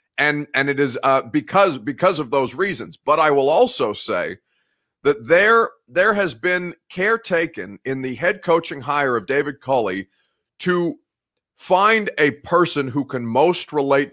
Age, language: 30-49, English